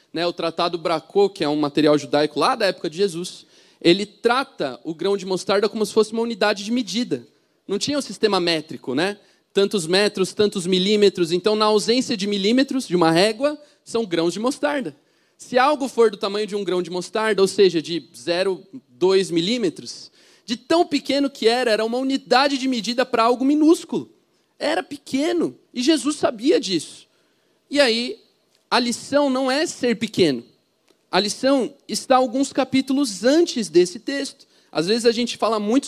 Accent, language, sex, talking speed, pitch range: Brazilian, Portuguese, male, 175 wpm, 200-265 Hz